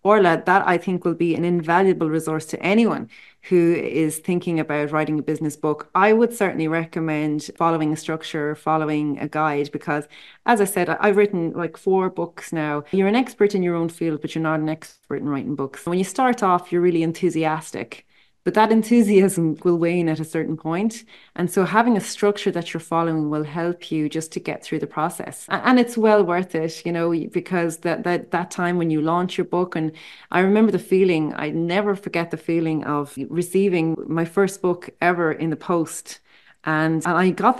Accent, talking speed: Irish, 200 wpm